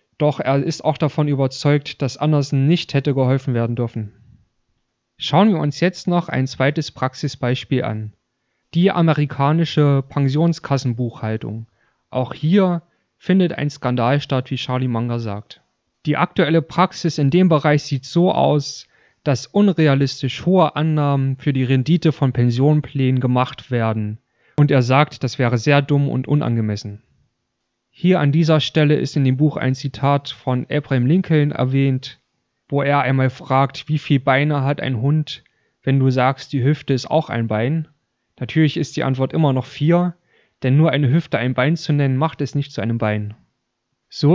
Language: German